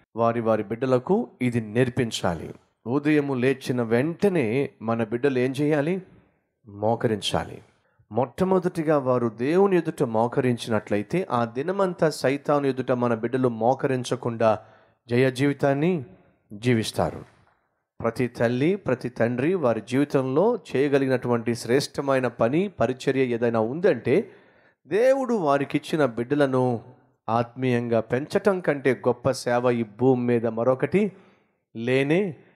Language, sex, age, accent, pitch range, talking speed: Telugu, male, 30-49, native, 120-170 Hz, 100 wpm